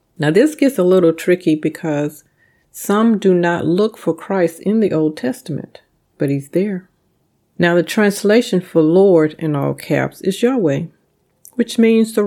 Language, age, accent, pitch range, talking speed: English, 40-59, American, 155-200 Hz, 160 wpm